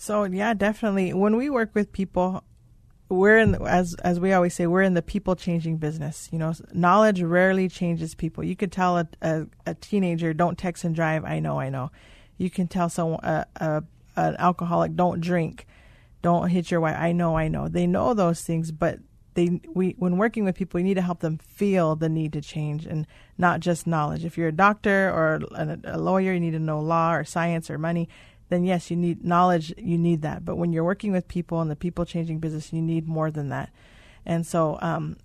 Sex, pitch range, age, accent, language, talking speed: female, 160-180 Hz, 30-49, American, English, 220 wpm